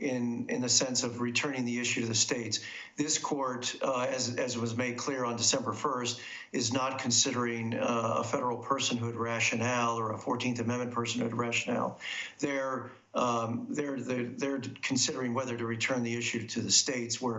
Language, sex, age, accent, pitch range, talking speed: English, male, 50-69, American, 115-130 Hz, 170 wpm